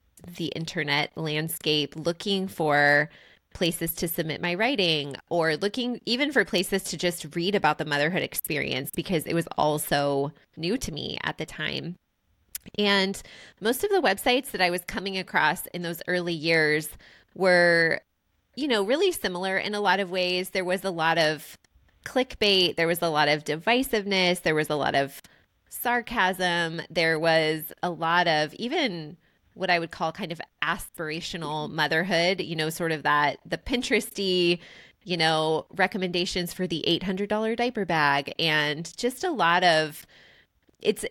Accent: American